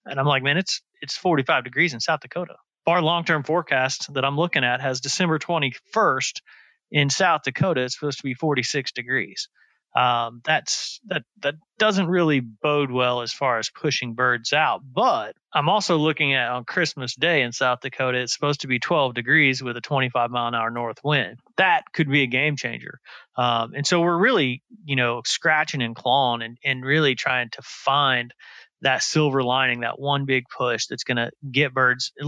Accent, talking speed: American, 190 wpm